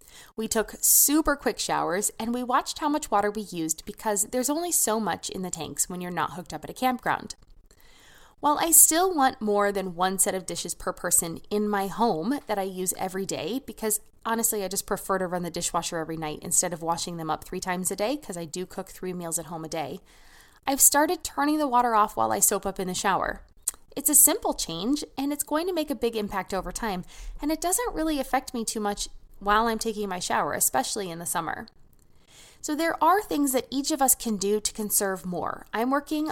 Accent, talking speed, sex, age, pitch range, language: American, 230 wpm, female, 20-39, 185-260 Hz, English